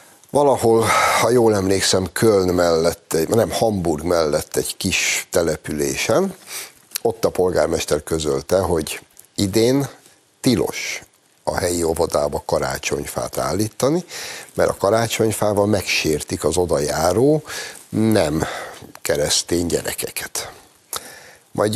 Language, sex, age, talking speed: Hungarian, male, 60-79, 95 wpm